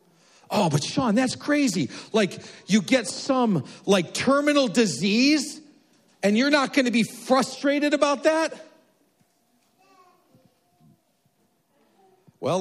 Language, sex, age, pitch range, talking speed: English, male, 50-69, 195-270 Hz, 105 wpm